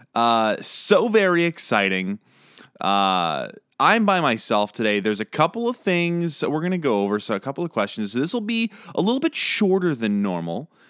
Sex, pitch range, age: male, 100-170 Hz, 20-39